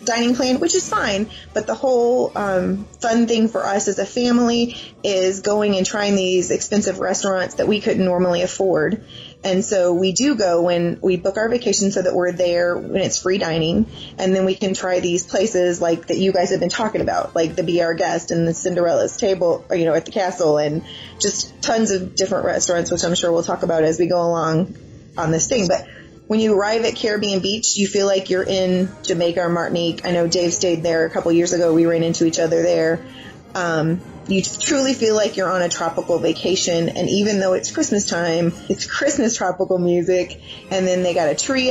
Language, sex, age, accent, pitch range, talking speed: English, female, 20-39, American, 175-210 Hz, 220 wpm